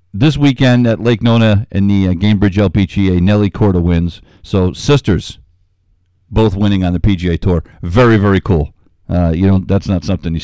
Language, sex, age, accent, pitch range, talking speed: English, male, 50-69, American, 90-105 Hz, 180 wpm